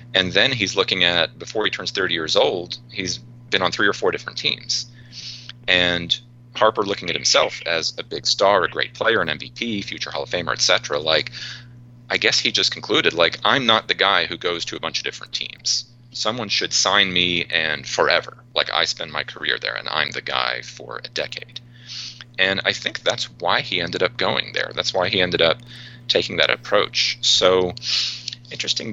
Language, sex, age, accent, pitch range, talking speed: English, male, 30-49, American, 85-120 Hz, 200 wpm